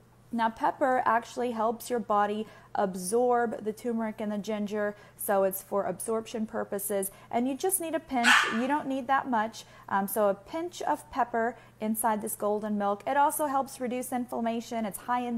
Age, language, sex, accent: 30-49, English, female, American